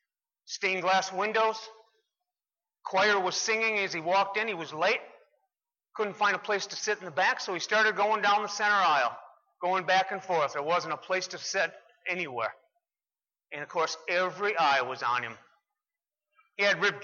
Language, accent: English, American